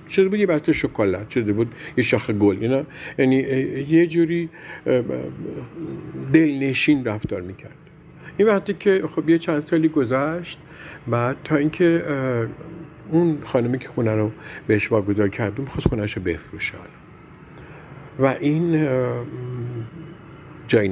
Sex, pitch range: male, 110-160 Hz